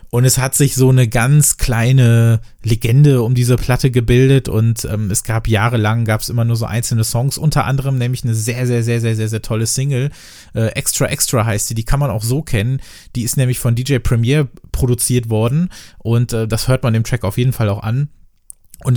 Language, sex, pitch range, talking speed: German, male, 115-135 Hz, 220 wpm